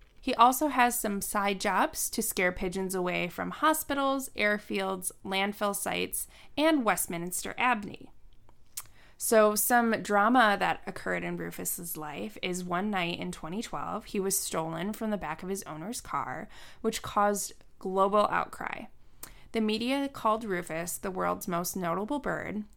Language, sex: English, female